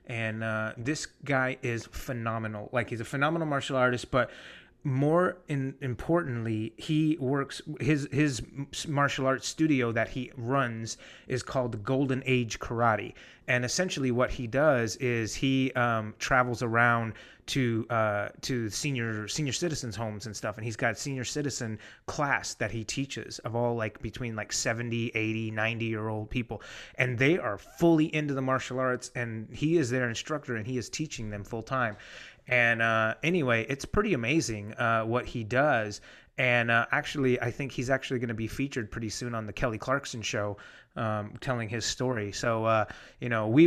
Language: English